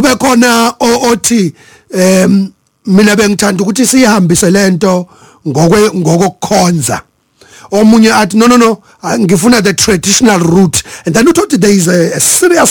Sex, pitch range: male, 185-235 Hz